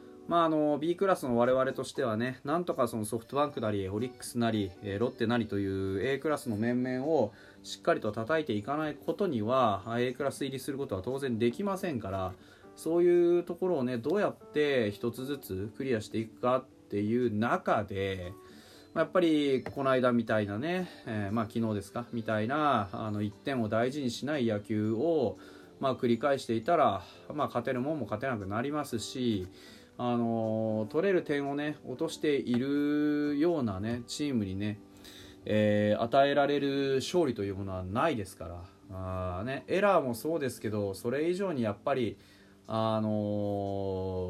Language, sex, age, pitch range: Japanese, male, 20-39, 100-140 Hz